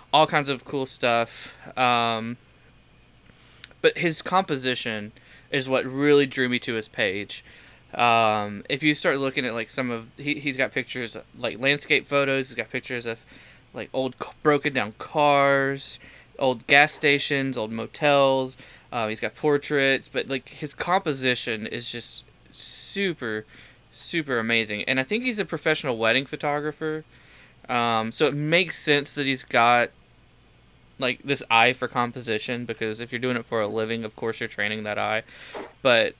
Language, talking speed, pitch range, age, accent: English, 155 wpm, 120-140 Hz, 20-39, American